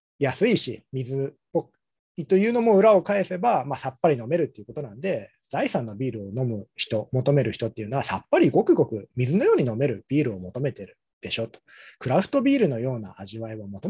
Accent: native